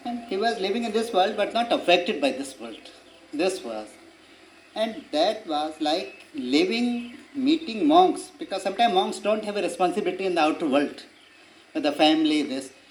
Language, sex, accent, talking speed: English, male, Indian, 170 wpm